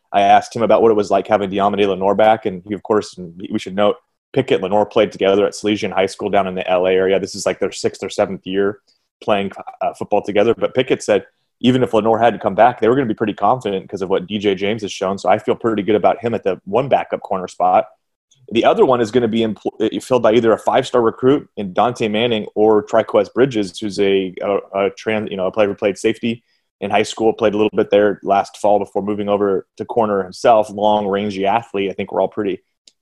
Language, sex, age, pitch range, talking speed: English, male, 30-49, 100-115 Hz, 250 wpm